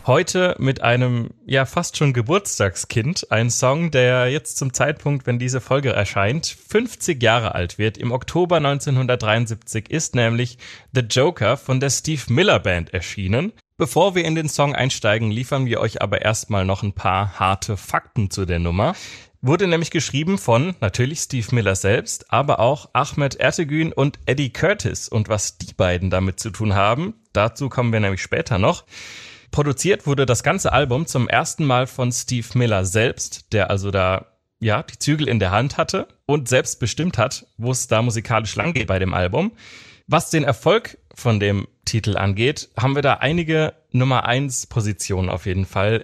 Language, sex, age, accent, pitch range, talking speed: German, male, 30-49, German, 105-140 Hz, 170 wpm